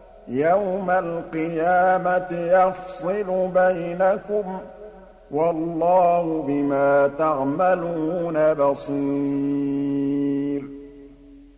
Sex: male